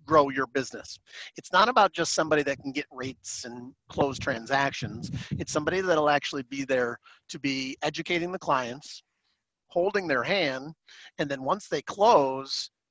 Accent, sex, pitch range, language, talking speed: American, male, 135-155 Hz, English, 160 wpm